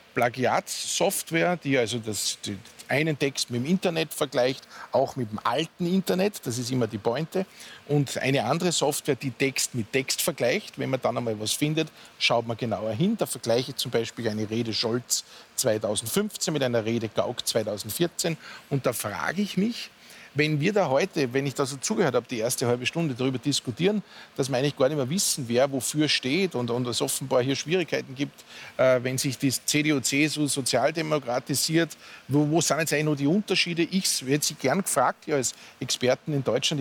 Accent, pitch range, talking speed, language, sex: Austrian, 130-165 Hz, 190 wpm, German, male